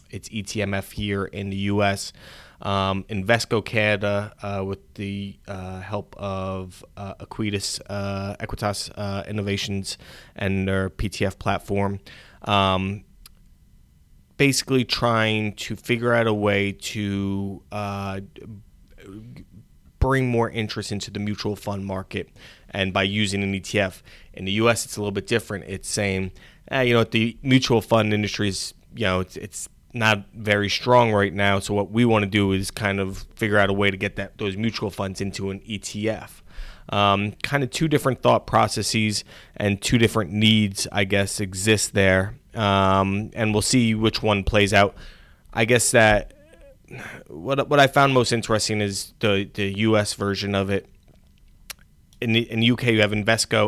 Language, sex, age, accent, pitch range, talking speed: English, male, 20-39, American, 95-110 Hz, 160 wpm